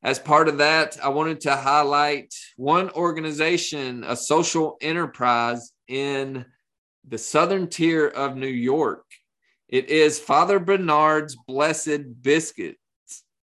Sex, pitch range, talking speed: male, 130-155 Hz, 115 wpm